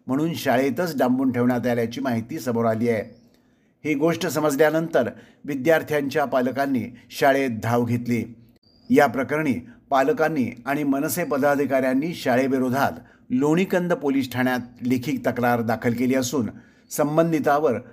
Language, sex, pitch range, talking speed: Marathi, male, 125-155 Hz, 110 wpm